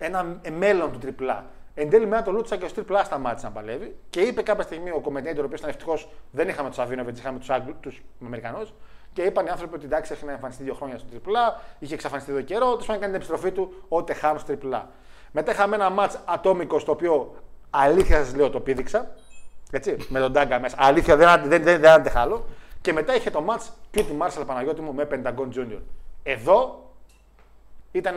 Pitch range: 135-190 Hz